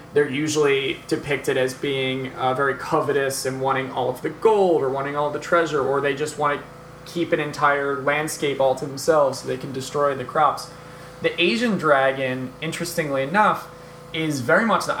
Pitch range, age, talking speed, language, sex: 135-165 Hz, 20-39, 190 wpm, English, male